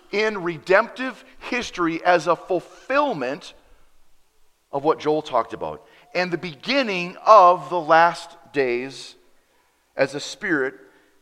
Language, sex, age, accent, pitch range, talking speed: English, male, 40-59, American, 145-190 Hz, 110 wpm